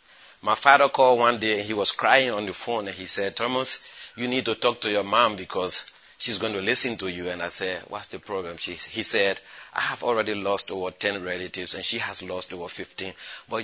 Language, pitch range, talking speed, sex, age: English, 100-125 Hz, 230 wpm, male, 30-49